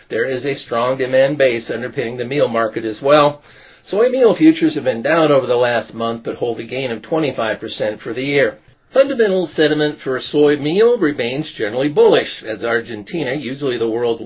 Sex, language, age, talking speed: male, English, 50-69, 190 wpm